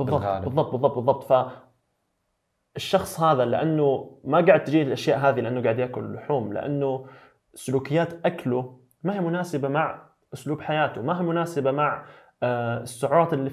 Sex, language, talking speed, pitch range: male, Arabic, 140 wpm, 115-150 Hz